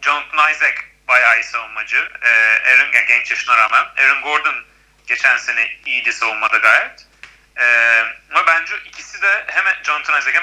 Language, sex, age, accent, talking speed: Turkish, male, 40-59, native, 150 wpm